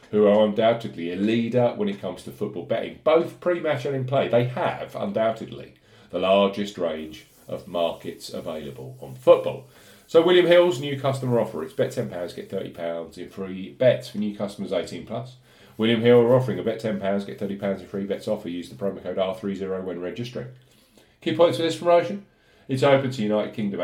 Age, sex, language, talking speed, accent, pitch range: 40-59, male, English, 190 wpm, British, 100-130 Hz